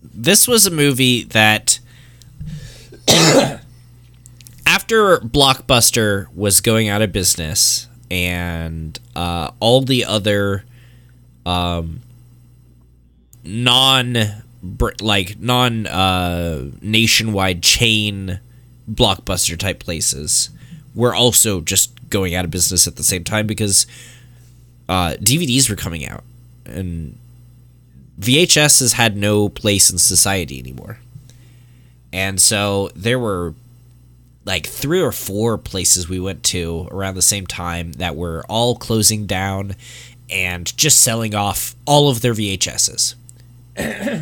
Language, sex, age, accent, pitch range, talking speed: English, male, 20-39, American, 95-120 Hz, 110 wpm